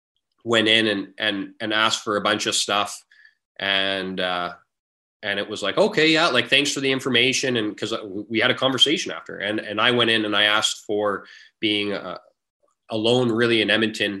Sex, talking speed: male, 195 wpm